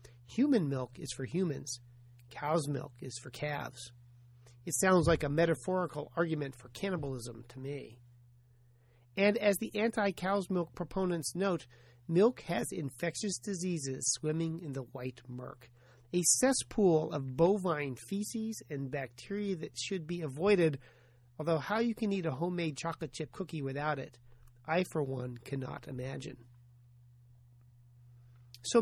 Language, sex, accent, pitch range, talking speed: English, male, American, 120-175 Hz, 135 wpm